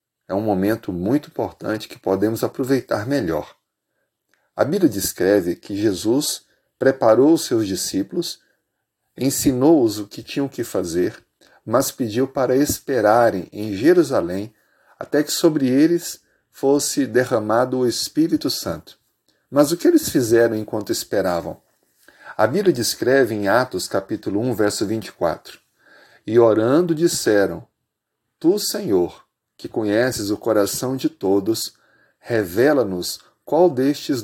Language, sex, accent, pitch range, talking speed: Portuguese, male, Brazilian, 110-160 Hz, 120 wpm